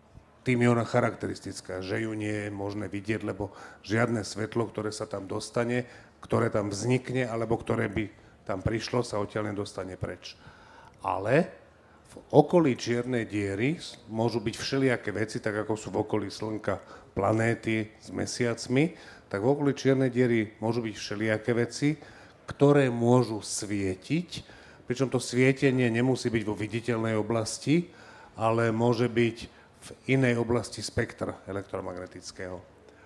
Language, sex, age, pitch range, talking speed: Slovak, male, 40-59, 105-125 Hz, 135 wpm